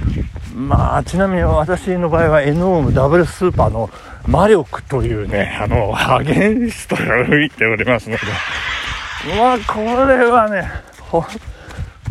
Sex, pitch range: male, 115-195 Hz